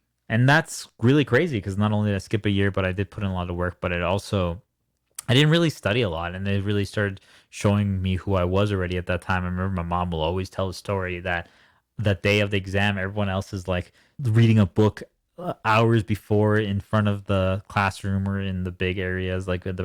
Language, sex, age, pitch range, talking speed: English, male, 20-39, 90-110 Hz, 240 wpm